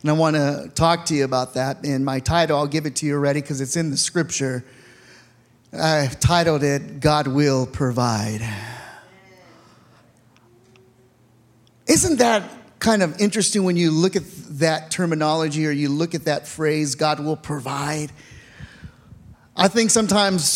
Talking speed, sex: 150 wpm, male